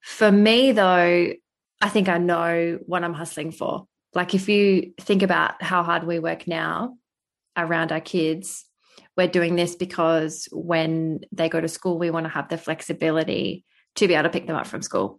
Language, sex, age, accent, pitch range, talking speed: English, female, 20-39, Australian, 165-180 Hz, 190 wpm